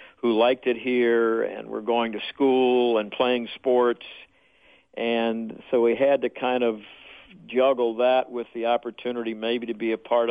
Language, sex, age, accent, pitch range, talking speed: English, male, 60-79, American, 115-130 Hz, 170 wpm